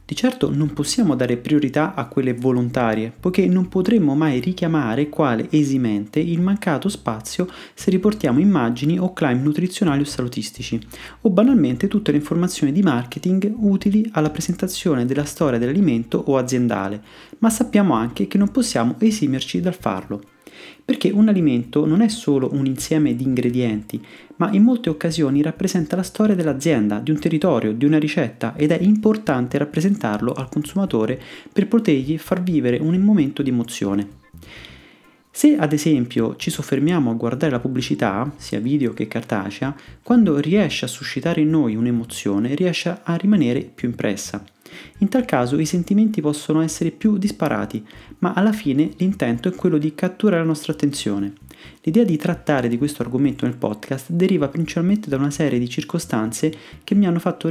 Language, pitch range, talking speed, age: Italian, 130-185 Hz, 160 wpm, 30-49